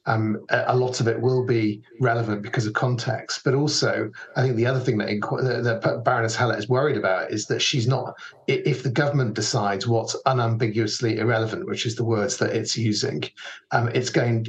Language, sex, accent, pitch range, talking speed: English, male, British, 110-130 Hz, 195 wpm